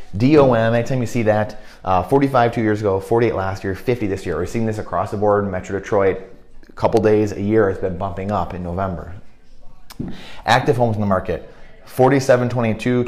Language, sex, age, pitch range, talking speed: English, male, 30-49, 95-115 Hz, 195 wpm